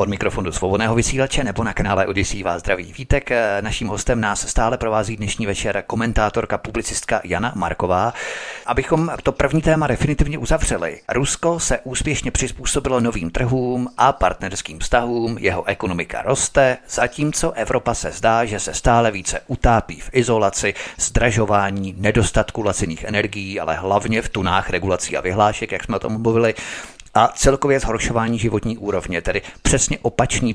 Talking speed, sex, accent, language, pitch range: 145 wpm, male, native, Czech, 105-125 Hz